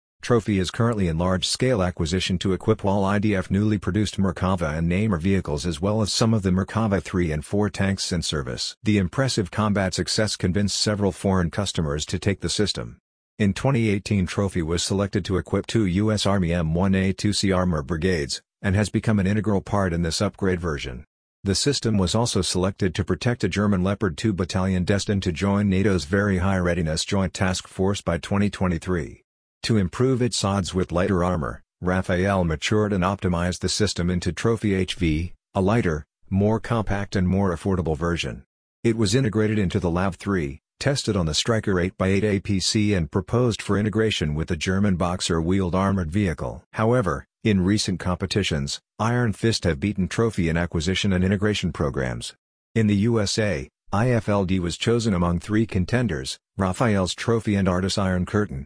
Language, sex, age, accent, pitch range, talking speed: Hebrew, male, 50-69, American, 90-105 Hz, 170 wpm